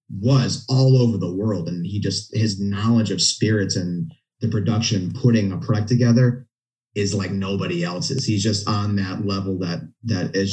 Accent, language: American, English